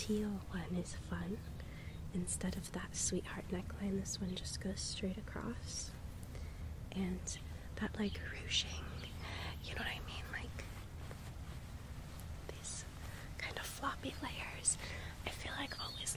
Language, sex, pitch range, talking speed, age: English, female, 80-105 Hz, 125 wpm, 20-39